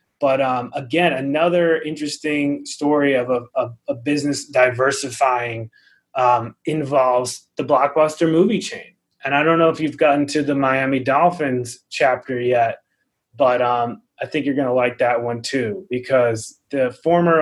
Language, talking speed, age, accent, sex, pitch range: English, 155 wpm, 20-39, American, male, 120-145 Hz